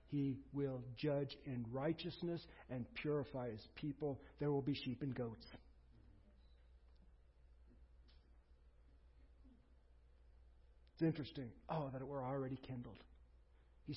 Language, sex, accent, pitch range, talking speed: English, male, American, 115-145 Hz, 105 wpm